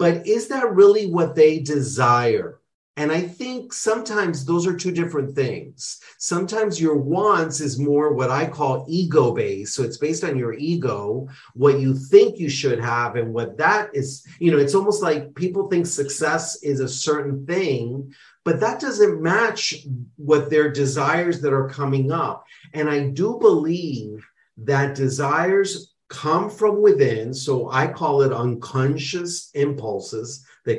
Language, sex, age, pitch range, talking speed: English, male, 40-59, 135-180 Hz, 155 wpm